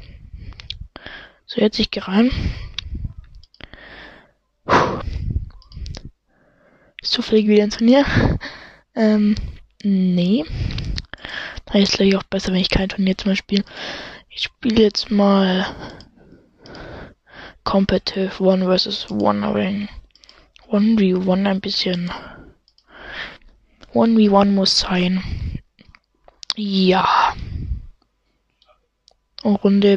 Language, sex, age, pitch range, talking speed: English, female, 20-39, 185-210 Hz, 85 wpm